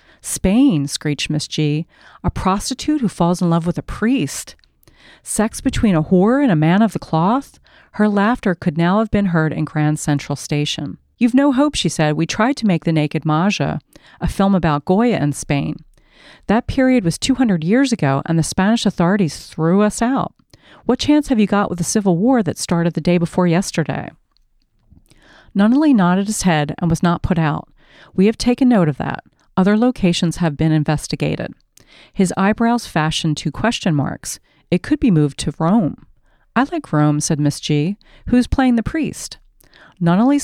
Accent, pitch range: American, 155-220 Hz